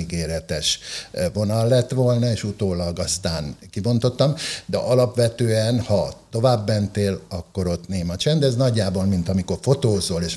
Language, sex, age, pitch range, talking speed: Hungarian, male, 60-79, 85-110 Hz, 135 wpm